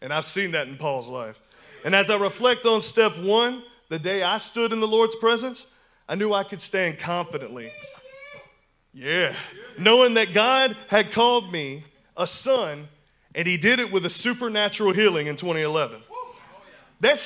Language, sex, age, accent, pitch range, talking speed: English, male, 30-49, American, 195-255 Hz, 165 wpm